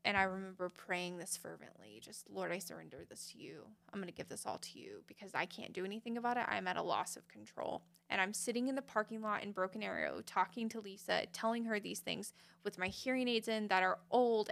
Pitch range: 180-215 Hz